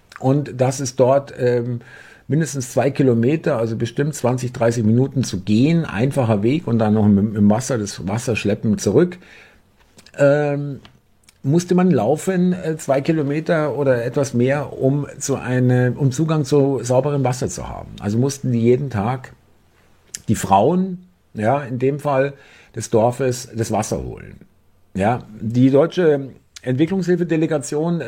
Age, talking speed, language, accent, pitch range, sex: 50-69, 140 wpm, German, German, 115-145 Hz, male